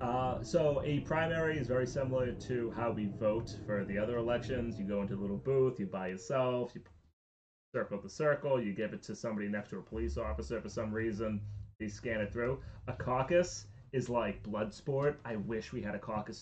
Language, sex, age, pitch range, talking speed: English, male, 30-49, 105-130 Hz, 210 wpm